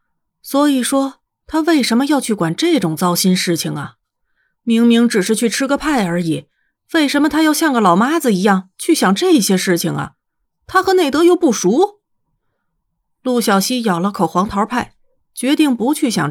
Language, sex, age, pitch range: Chinese, female, 30-49, 185-300 Hz